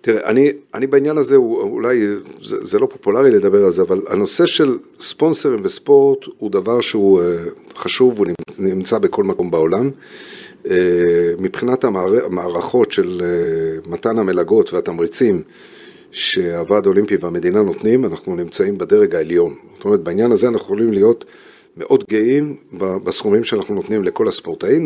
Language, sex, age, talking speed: Hebrew, male, 50-69, 140 wpm